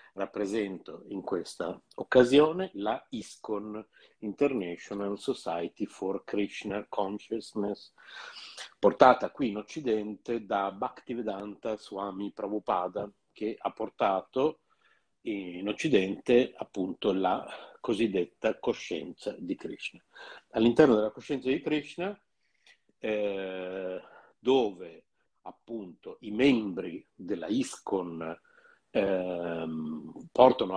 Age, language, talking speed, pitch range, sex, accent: 50-69, Italian, 85 wpm, 100-125 Hz, male, native